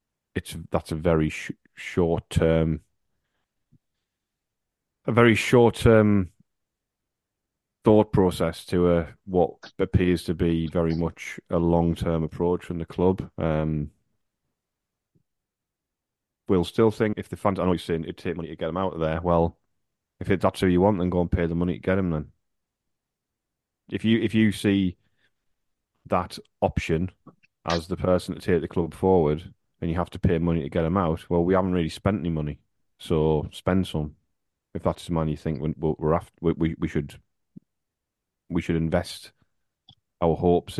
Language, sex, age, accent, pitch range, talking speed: English, male, 30-49, British, 80-95 Hz, 175 wpm